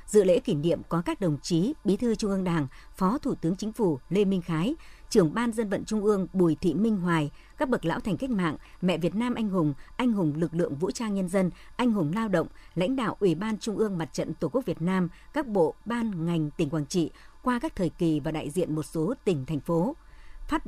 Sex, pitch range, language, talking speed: male, 165-225 Hz, Vietnamese, 250 wpm